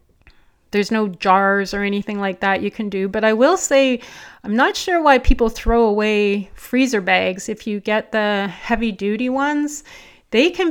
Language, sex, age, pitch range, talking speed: English, female, 30-49, 195-240 Hz, 180 wpm